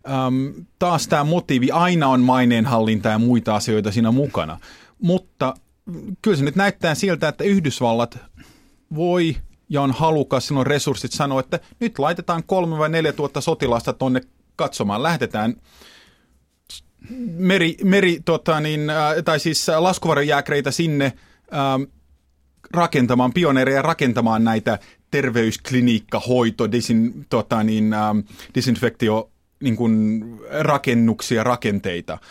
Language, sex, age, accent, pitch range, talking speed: Finnish, male, 30-49, native, 115-160 Hz, 110 wpm